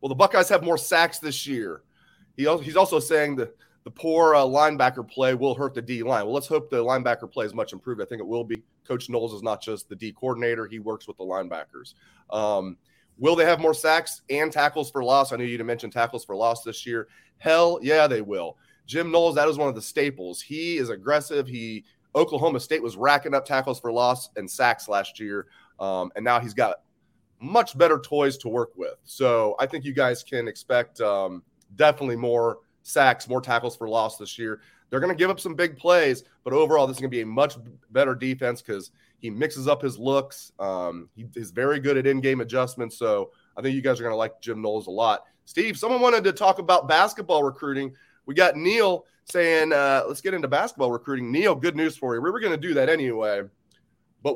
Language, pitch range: English, 115-155 Hz